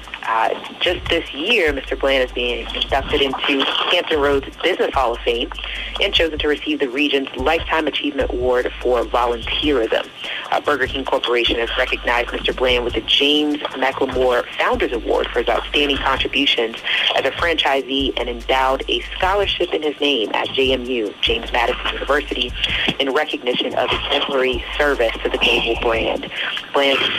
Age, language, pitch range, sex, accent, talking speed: 40-59, English, 130-155 Hz, female, American, 155 wpm